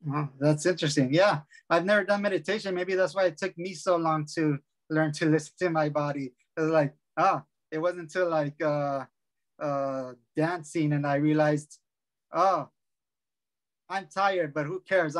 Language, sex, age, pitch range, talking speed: English, male, 20-39, 140-175 Hz, 175 wpm